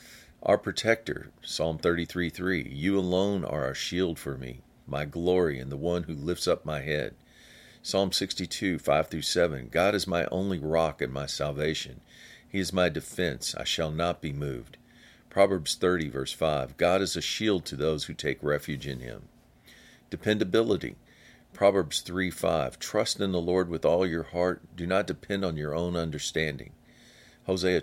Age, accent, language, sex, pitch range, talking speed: 50-69, American, English, male, 80-95 Hz, 170 wpm